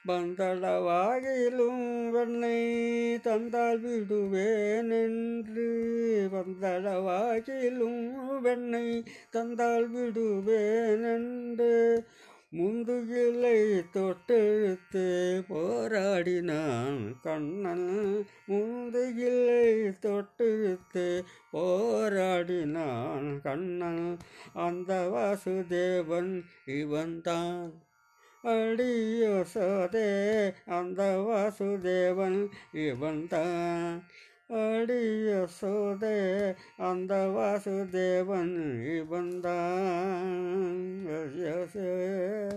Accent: native